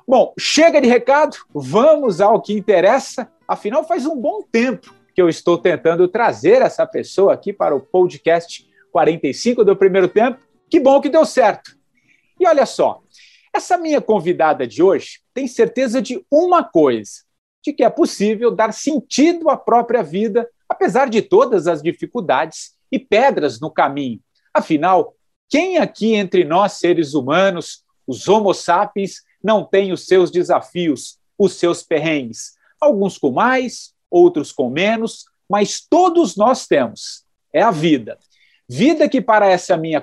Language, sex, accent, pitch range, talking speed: English, male, Brazilian, 180-285 Hz, 150 wpm